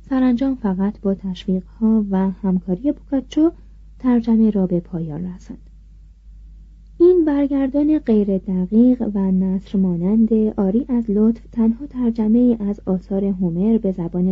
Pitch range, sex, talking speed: 185-230 Hz, female, 120 wpm